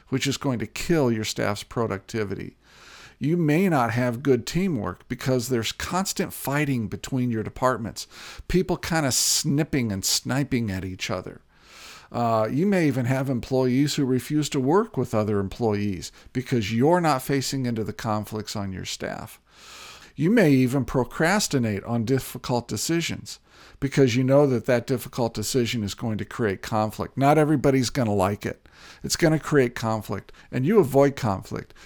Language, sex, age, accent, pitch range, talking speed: English, male, 50-69, American, 110-145 Hz, 160 wpm